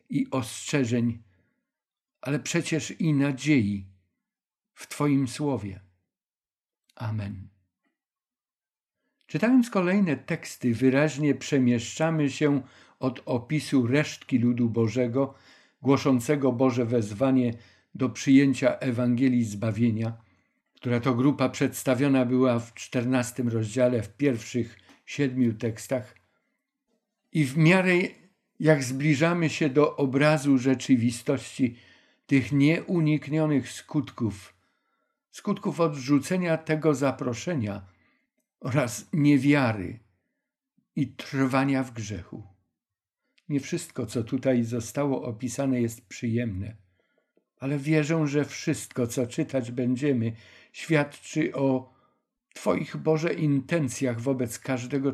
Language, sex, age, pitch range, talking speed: Polish, male, 50-69, 120-150 Hz, 90 wpm